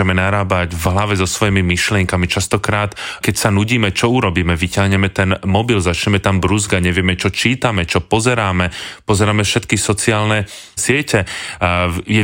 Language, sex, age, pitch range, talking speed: Slovak, male, 30-49, 95-120 Hz, 135 wpm